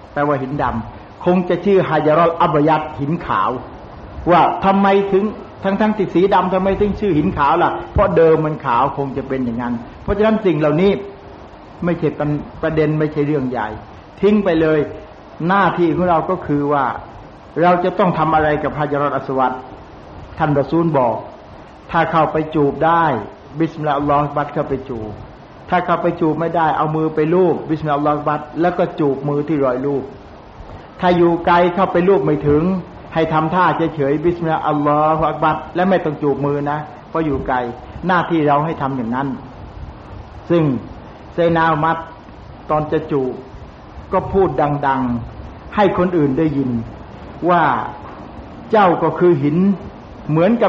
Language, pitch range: Thai, 140-175 Hz